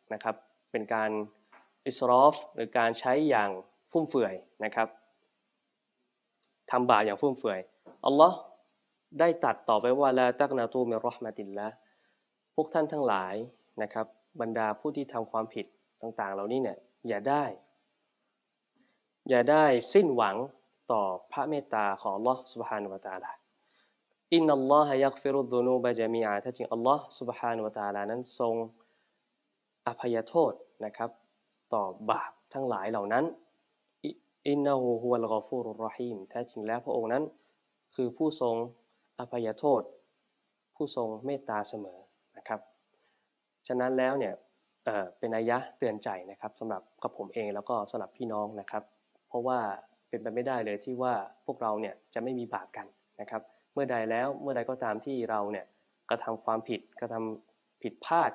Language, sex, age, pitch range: Thai, male, 20-39, 110-130 Hz